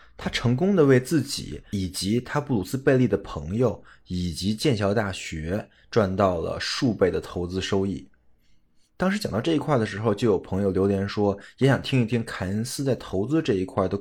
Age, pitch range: 20-39, 95-120 Hz